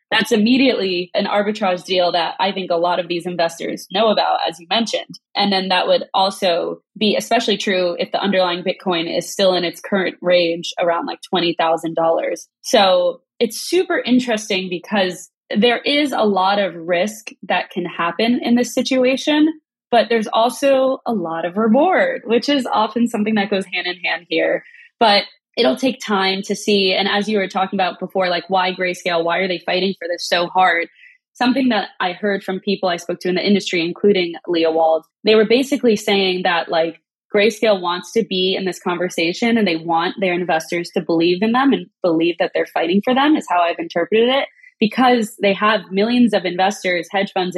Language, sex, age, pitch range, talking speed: English, female, 20-39, 180-225 Hz, 195 wpm